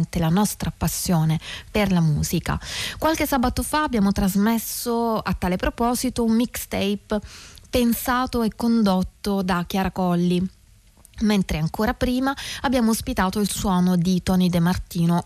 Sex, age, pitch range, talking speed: female, 20-39, 175-225 Hz, 130 wpm